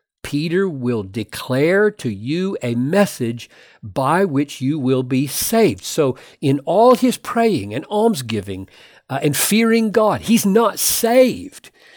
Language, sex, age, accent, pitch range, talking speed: English, male, 60-79, American, 135-210 Hz, 135 wpm